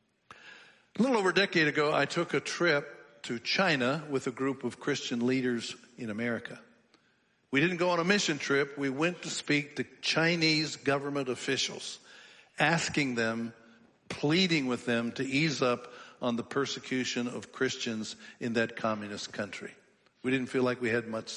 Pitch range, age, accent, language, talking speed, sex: 125-150 Hz, 60-79, American, English, 165 wpm, male